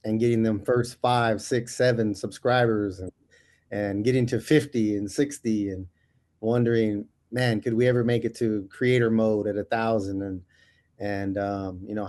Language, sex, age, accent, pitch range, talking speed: English, male, 30-49, American, 105-120 Hz, 170 wpm